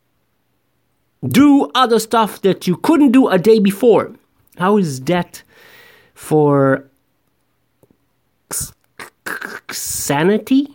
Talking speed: 85 wpm